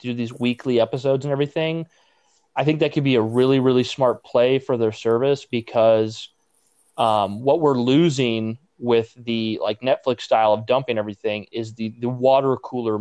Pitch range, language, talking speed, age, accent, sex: 110-130 Hz, English, 170 wpm, 30-49, American, male